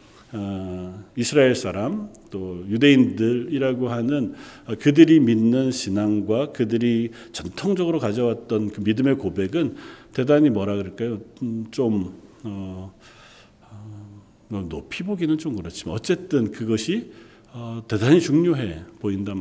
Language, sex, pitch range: Korean, male, 110-150 Hz